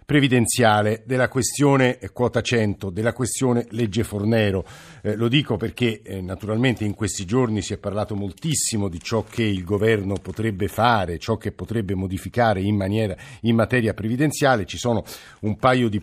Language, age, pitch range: Italian, 50-69, 95-120 Hz